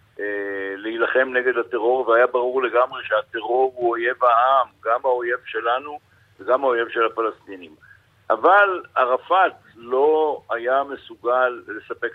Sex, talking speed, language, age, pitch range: male, 115 wpm, Hebrew, 60-79, 115-140 Hz